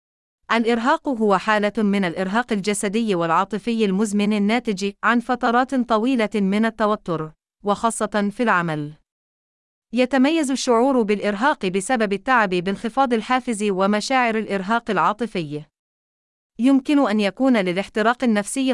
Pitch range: 200-245 Hz